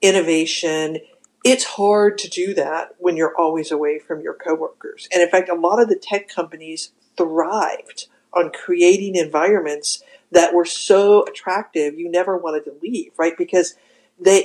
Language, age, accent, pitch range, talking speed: English, 50-69, American, 160-240 Hz, 160 wpm